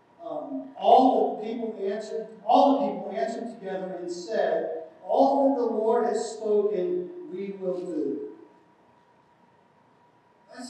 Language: English